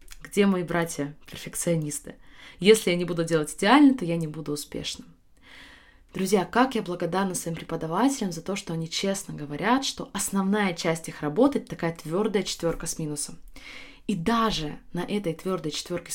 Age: 20-39